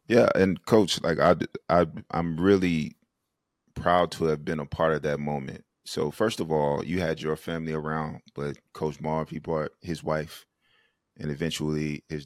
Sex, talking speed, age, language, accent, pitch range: male, 175 wpm, 30-49, English, American, 75-85 Hz